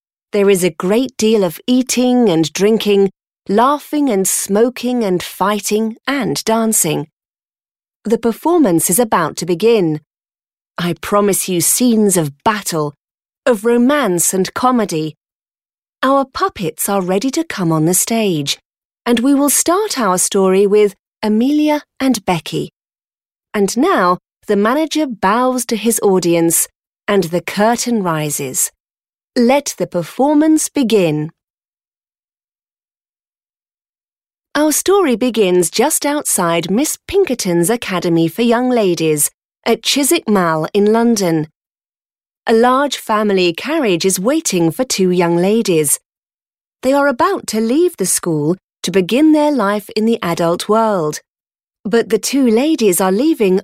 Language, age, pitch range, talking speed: Slovak, 30-49, 180-250 Hz, 130 wpm